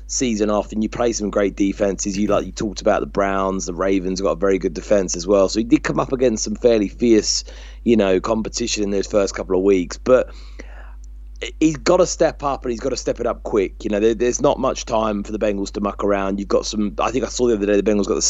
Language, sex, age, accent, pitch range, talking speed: English, male, 30-49, British, 95-110 Hz, 275 wpm